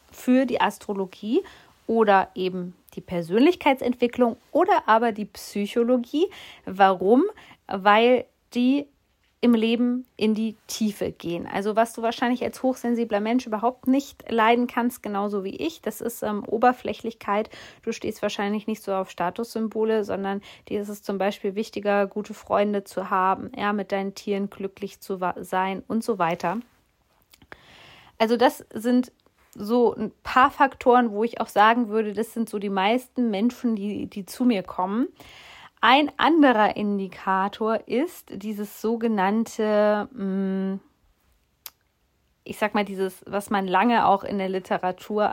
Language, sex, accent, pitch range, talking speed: German, female, German, 195-240 Hz, 140 wpm